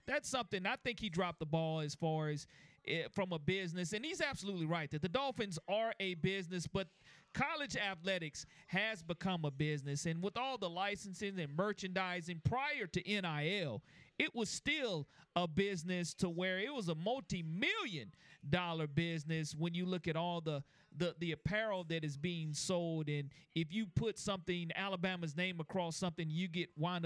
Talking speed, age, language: 175 wpm, 40-59, English